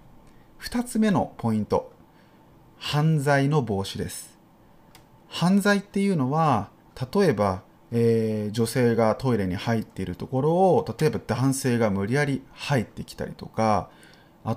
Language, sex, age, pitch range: Japanese, male, 30-49, 115-160 Hz